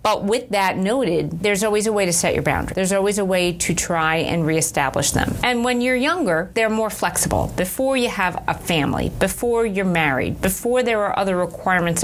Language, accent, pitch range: English, American, 170-215 Hz